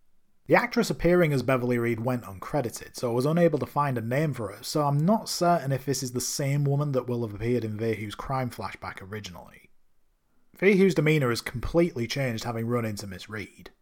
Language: English